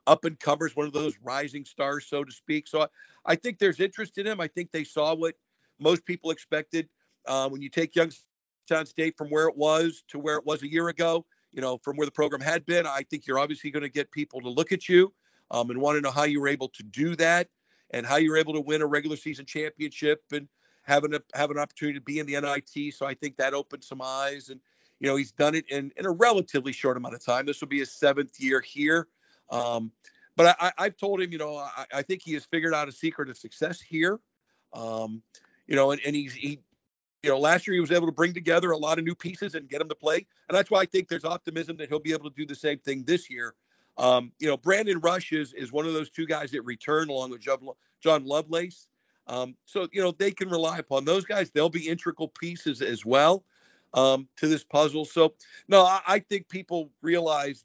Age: 50-69